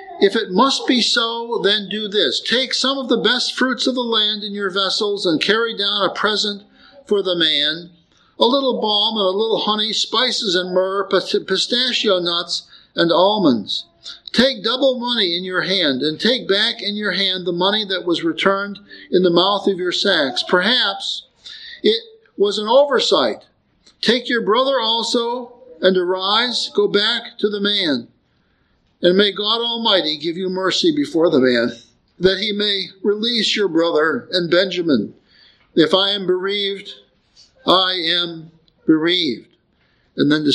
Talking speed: 160 wpm